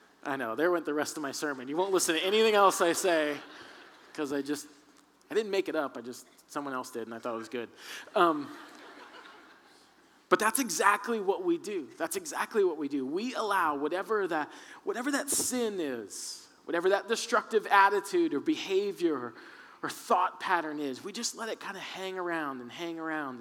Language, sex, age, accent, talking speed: English, male, 20-39, American, 200 wpm